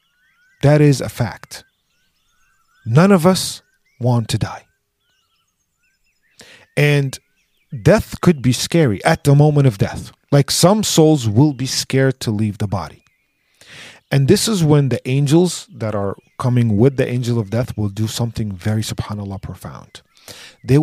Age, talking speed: 40-59, 145 wpm